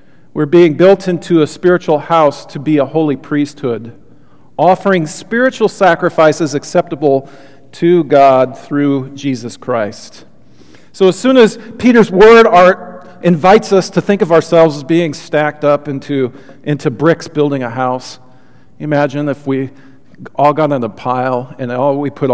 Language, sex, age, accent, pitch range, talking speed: English, male, 40-59, American, 125-160 Hz, 150 wpm